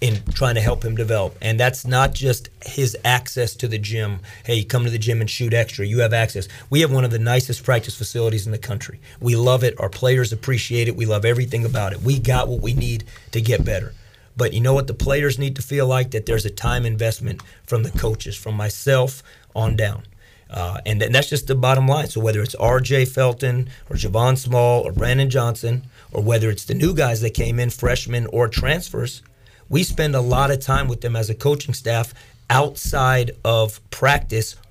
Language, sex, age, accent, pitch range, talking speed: English, male, 40-59, American, 115-135 Hz, 215 wpm